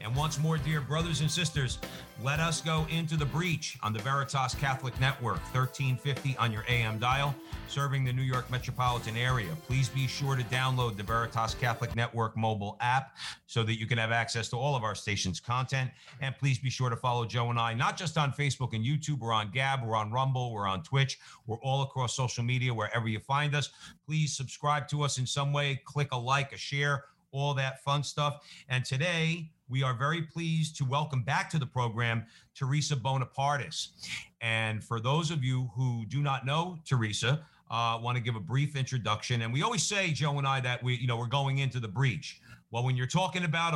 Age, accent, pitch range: 50-69, American, 120-145 Hz